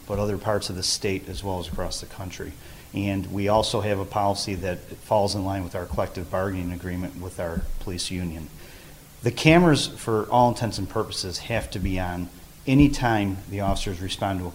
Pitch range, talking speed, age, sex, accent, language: 95-115 Hz, 200 wpm, 40-59, male, American, English